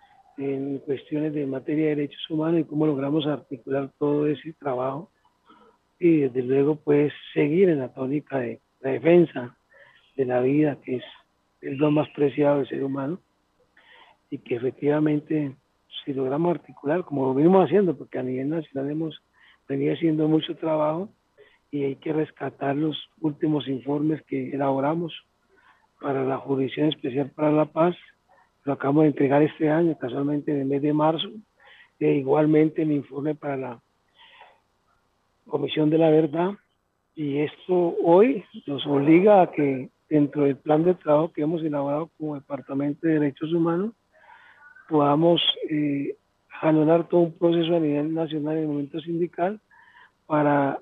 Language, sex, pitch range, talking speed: Spanish, male, 140-165 Hz, 150 wpm